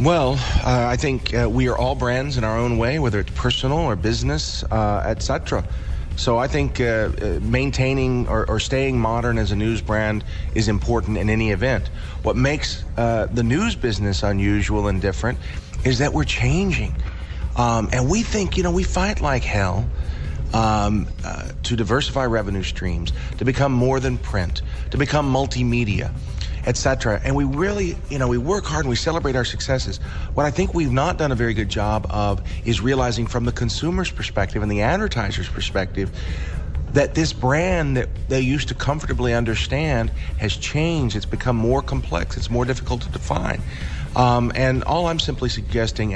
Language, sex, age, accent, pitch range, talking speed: Spanish, male, 40-59, American, 100-125 Hz, 180 wpm